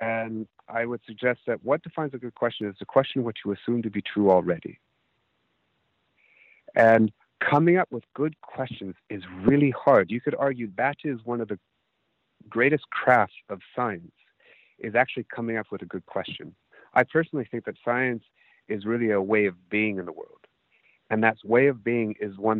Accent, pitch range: American, 100-130 Hz